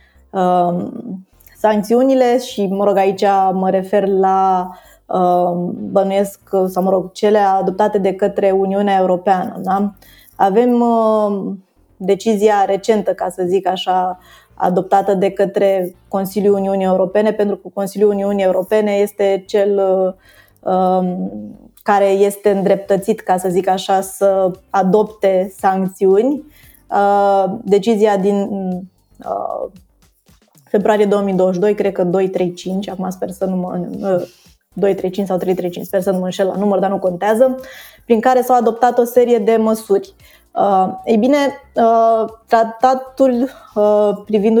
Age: 20-39